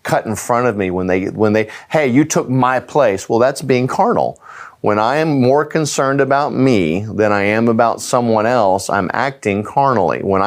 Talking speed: 200 wpm